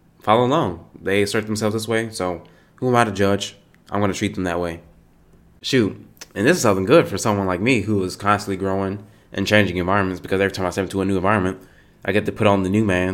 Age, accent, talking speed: 20-39, American, 245 wpm